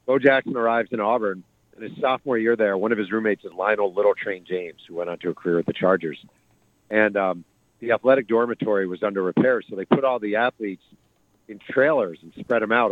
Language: English